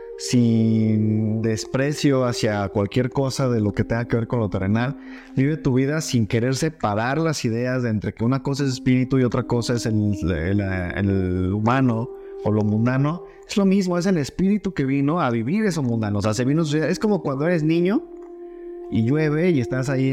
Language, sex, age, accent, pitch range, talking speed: Spanish, male, 30-49, Mexican, 120-165 Hz, 210 wpm